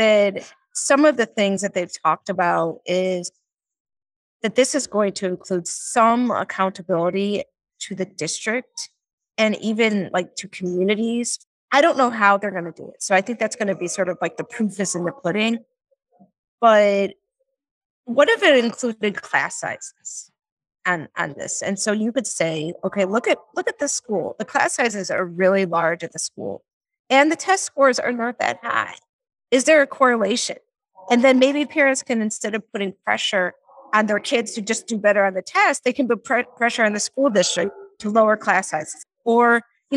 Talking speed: 190 wpm